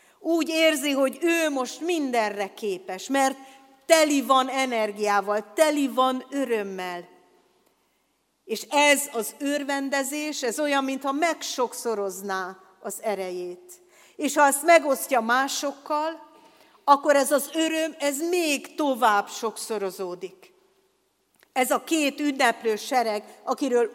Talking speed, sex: 110 wpm, female